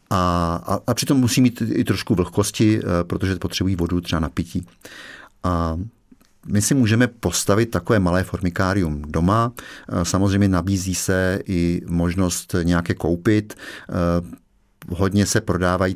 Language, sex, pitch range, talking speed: Czech, male, 85-100 Hz, 120 wpm